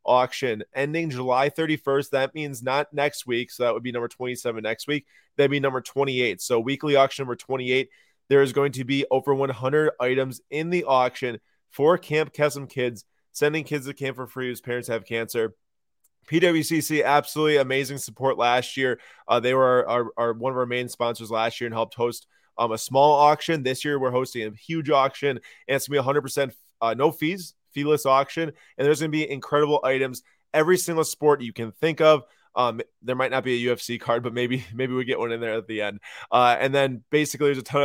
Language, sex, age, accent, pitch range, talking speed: English, male, 20-39, American, 120-145 Hz, 210 wpm